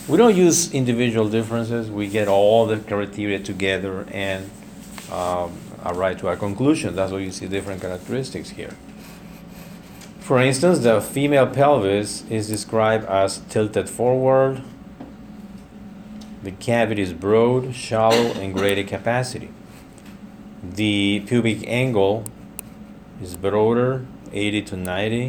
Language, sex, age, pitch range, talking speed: English, male, 40-59, 95-125 Hz, 120 wpm